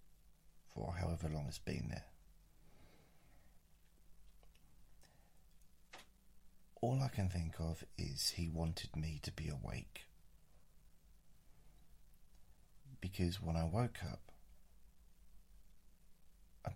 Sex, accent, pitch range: male, British, 80-90 Hz